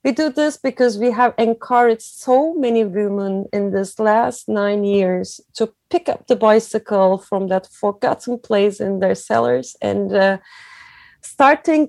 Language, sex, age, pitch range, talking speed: English, female, 30-49, 190-225 Hz, 150 wpm